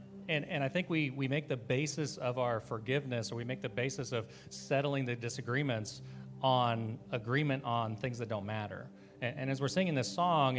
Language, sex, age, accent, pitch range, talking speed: English, male, 40-59, American, 115-140 Hz, 200 wpm